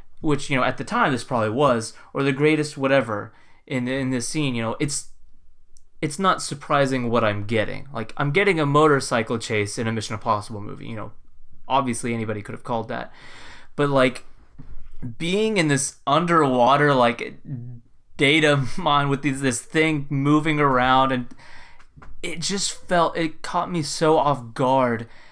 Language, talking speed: English, 165 wpm